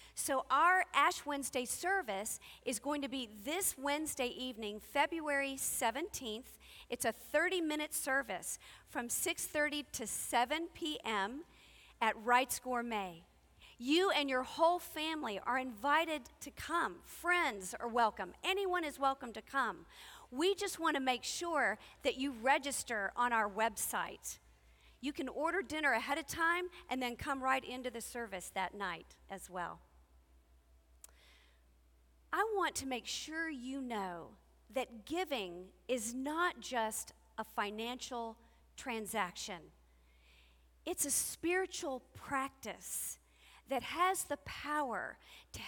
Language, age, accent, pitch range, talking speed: English, 40-59, American, 220-305 Hz, 125 wpm